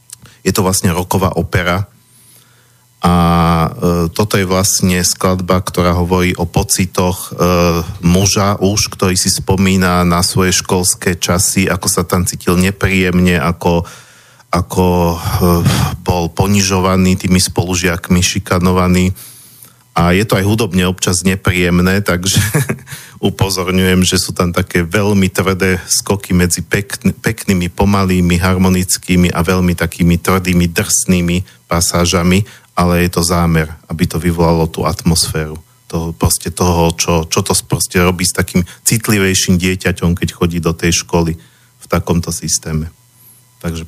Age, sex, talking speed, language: 40-59, male, 130 wpm, Slovak